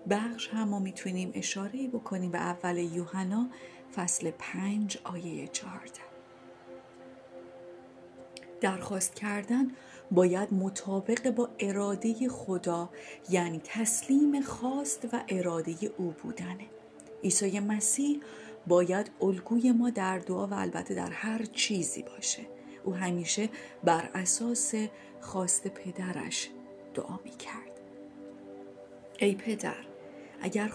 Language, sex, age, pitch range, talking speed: Persian, female, 40-59, 175-225 Hz, 100 wpm